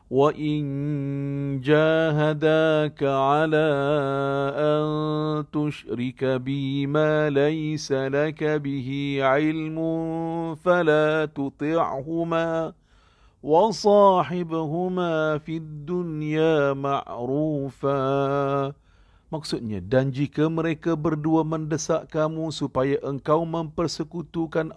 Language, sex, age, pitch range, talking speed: Malay, male, 50-69, 120-155 Hz, 65 wpm